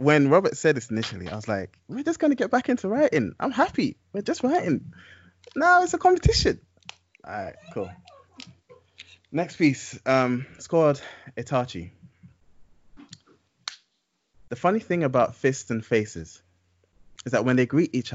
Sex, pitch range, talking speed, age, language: male, 105-130 Hz, 150 wpm, 20-39, English